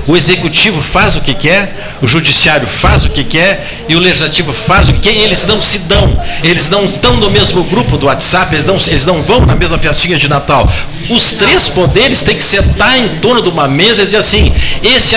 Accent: Brazilian